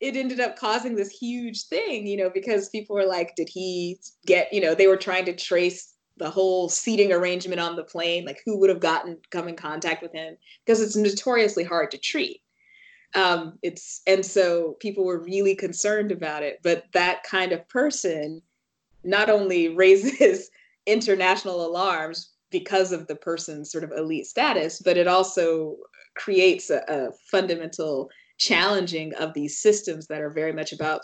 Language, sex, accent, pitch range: English, female, American, 165-210 Hz